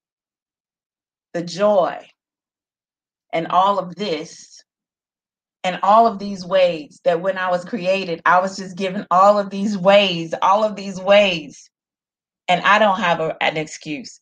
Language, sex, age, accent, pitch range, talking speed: English, female, 30-49, American, 175-225 Hz, 150 wpm